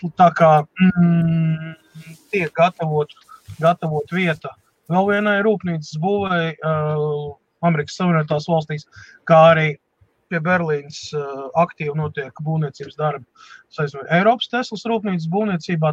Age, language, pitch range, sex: 30-49, English, 150-175 Hz, male